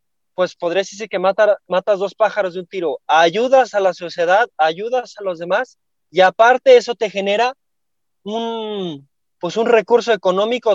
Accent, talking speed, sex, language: Mexican, 160 wpm, male, Spanish